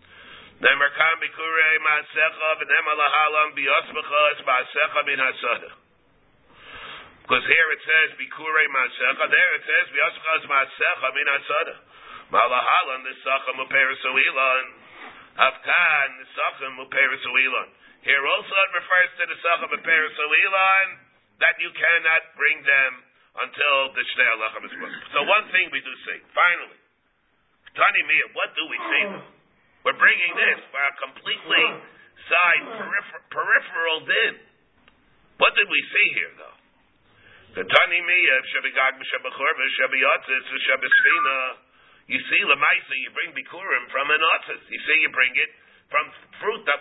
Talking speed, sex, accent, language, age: 110 wpm, male, American, English, 50-69